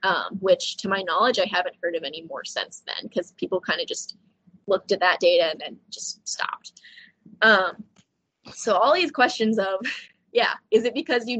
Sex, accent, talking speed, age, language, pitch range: female, American, 195 wpm, 20-39, English, 190-245 Hz